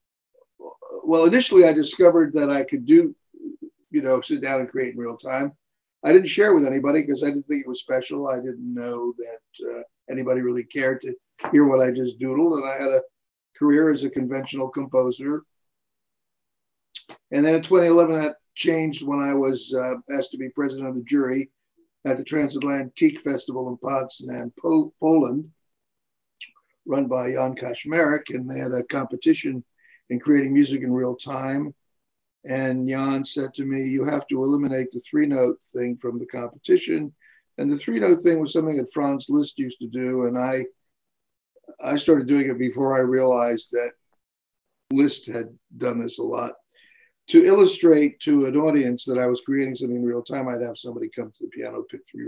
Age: 50-69